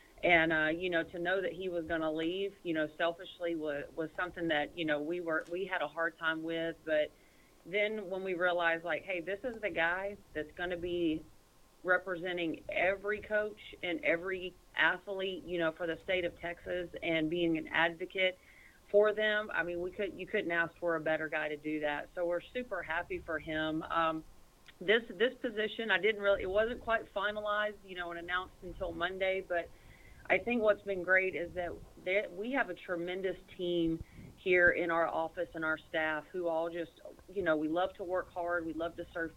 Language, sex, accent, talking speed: English, female, American, 205 wpm